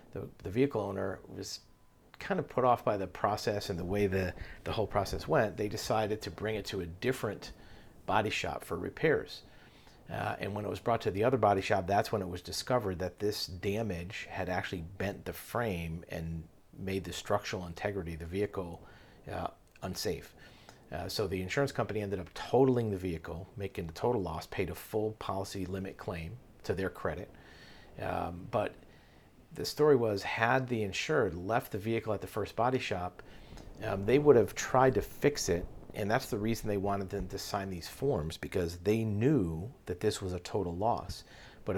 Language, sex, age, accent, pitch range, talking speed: English, male, 40-59, American, 90-110 Hz, 190 wpm